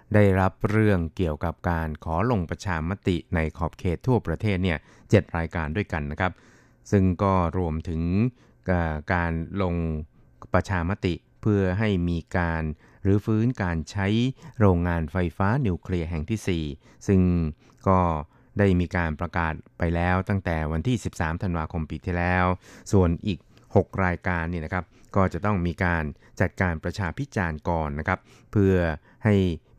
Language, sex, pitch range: Thai, male, 85-100 Hz